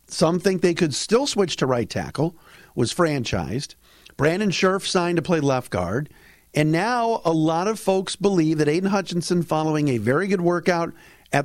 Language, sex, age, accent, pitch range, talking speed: English, male, 50-69, American, 135-185 Hz, 180 wpm